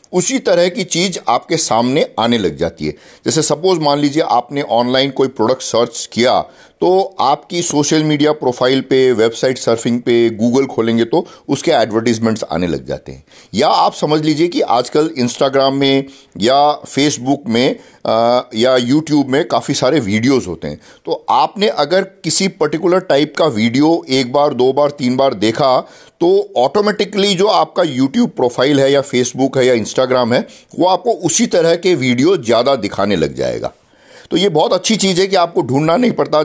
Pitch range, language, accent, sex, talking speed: 125-180 Hz, Hindi, native, male, 175 wpm